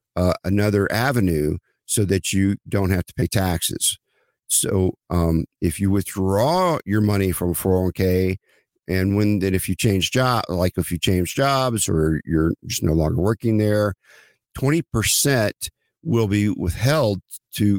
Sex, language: male, English